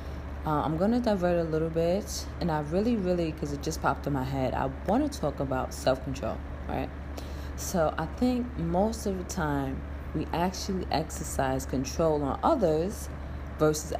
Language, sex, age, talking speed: English, female, 20-39, 170 wpm